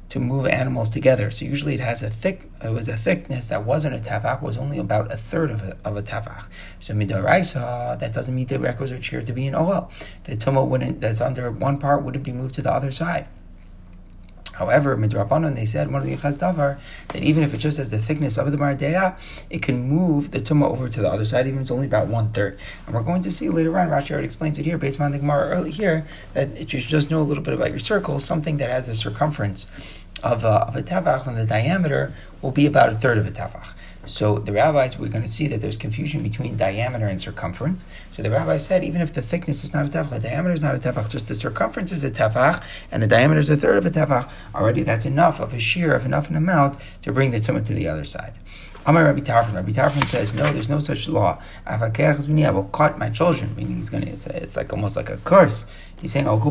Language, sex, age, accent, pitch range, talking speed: English, male, 30-49, American, 105-145 Hz, 250 wpm